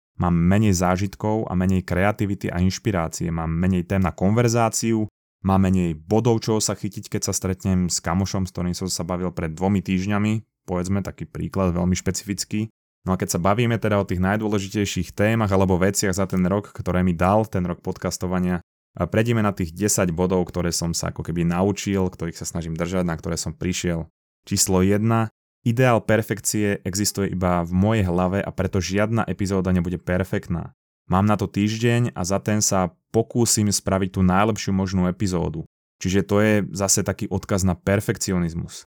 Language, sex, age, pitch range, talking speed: Slovak, male, 20-39, 90-105 Hz, 175 wpm